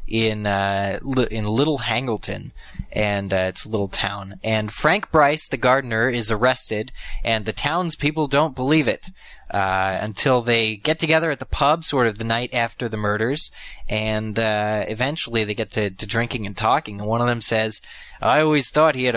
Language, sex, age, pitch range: English, male, 20-39, 110-140 Hz